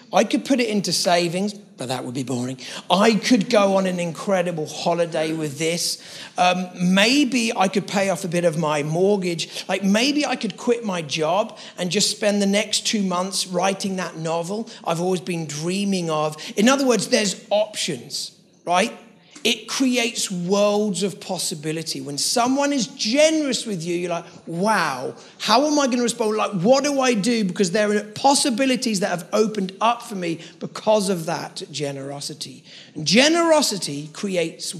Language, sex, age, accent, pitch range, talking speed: English, male, 40-59, British, 170-225 Hz, 175 wpm